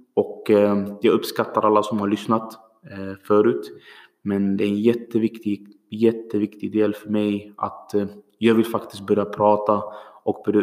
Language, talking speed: Swedish, 140 wpm